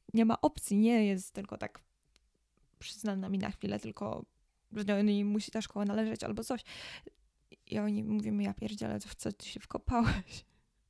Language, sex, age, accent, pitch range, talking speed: Polish, female, 20-39, native, 190-220 Hz, 160 wpm